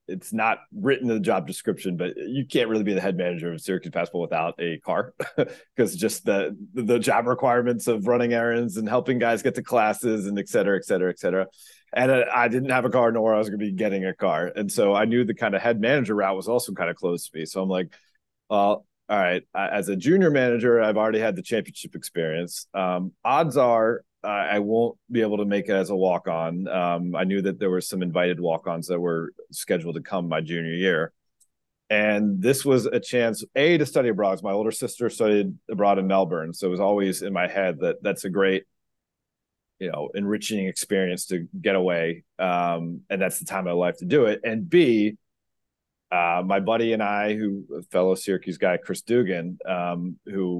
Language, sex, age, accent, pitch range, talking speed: English, male, 30-49, American, 90-115 Hz, 215 wpm